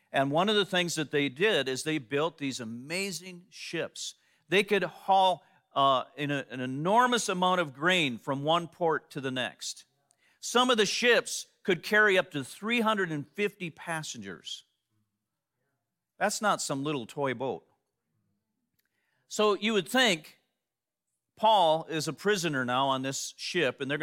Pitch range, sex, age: 140-195 Hz, male, 40-59